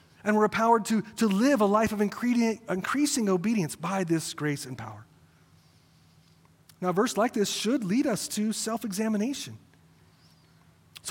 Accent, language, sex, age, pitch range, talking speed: American, English, male, 30-49, 155-225 Hz, 145 wpm